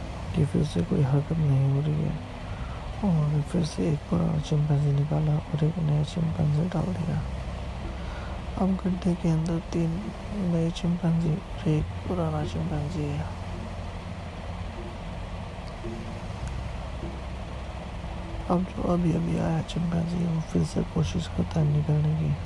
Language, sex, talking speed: Hindi, male, 95 wpm